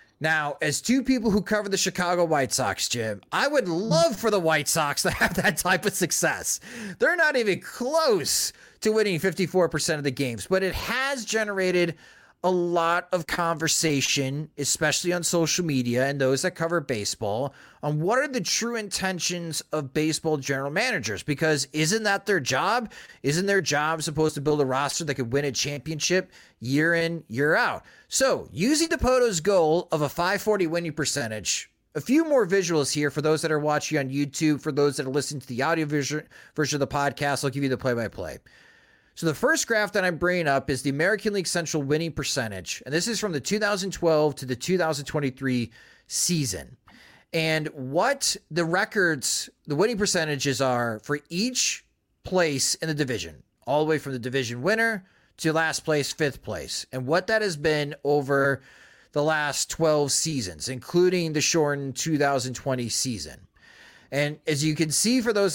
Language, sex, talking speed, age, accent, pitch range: English, male, 180 wpm, 30-49, American, 140-185 Hz